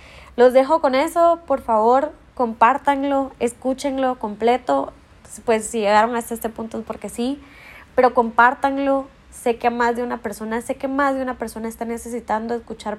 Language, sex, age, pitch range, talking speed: Spanish, female, 20-39, 210-245 Hz, 160 wpm